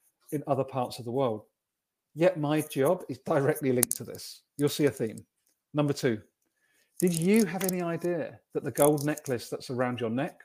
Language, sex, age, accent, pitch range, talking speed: English, male, 40-59, British, 130-165 Hz, 190 wpm